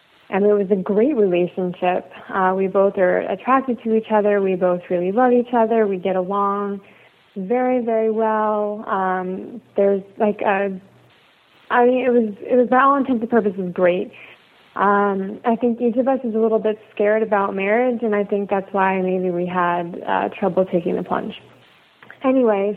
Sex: female